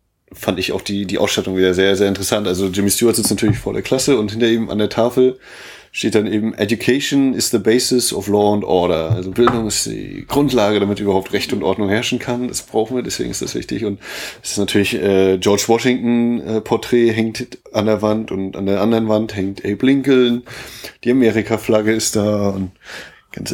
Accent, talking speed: German, 205 wpm